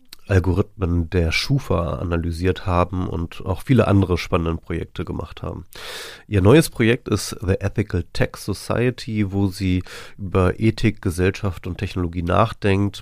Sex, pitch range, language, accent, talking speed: male, 90-110 Hz, German, German, 135 wpm